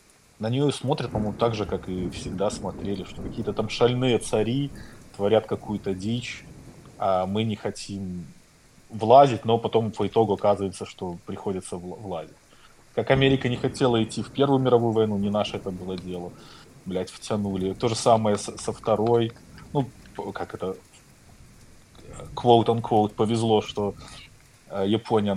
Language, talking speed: Russian, 140 wpm